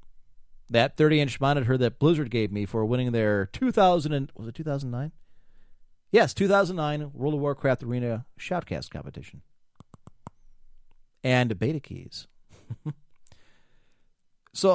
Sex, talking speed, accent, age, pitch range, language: male, 115 wpm, American, 40-59, 125-165 Hz, English